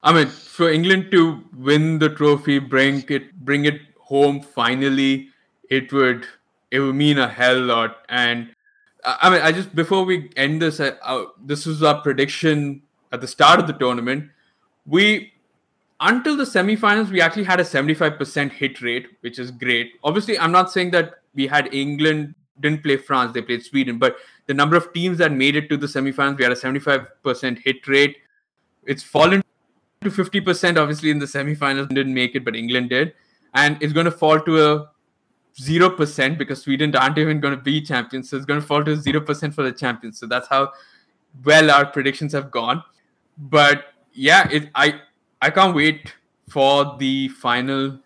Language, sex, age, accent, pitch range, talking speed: English, male, 20-39, Indian, 135-155 Hz, 180 wpm